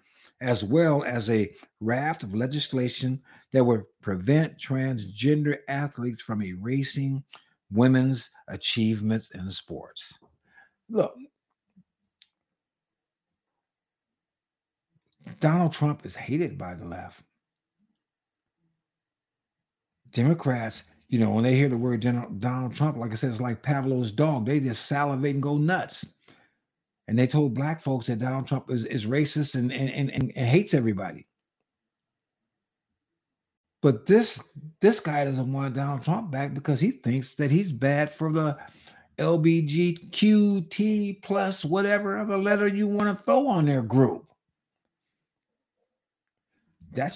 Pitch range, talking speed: 125-170 Hz, 120 wpm